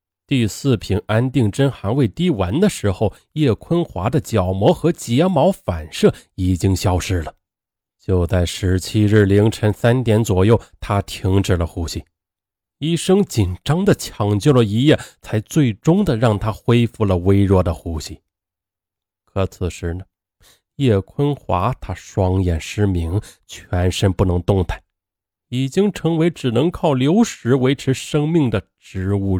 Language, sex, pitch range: Chinese, male, 95-140 Hz